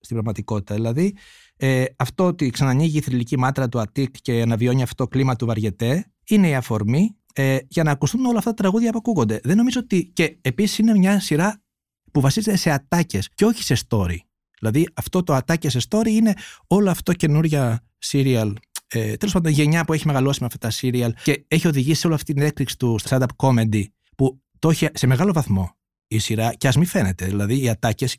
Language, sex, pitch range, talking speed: Greek, male, 125-185 Hz, 200 wpm